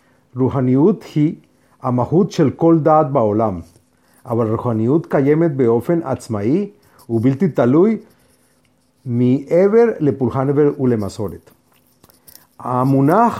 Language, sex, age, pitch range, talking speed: Hebrew, male, 50-69, 125-170 Hz, 80 wpm